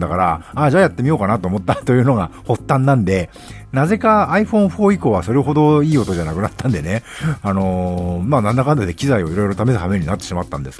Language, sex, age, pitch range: Japanese, male, 50-69, 85-140 Hz